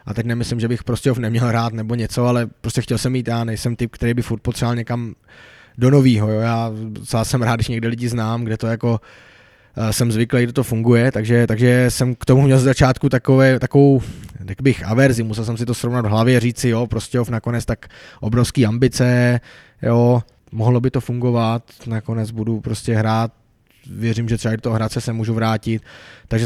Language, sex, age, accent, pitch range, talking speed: Czech, male, 20-39, native, 115-130 Hz, 200 wpm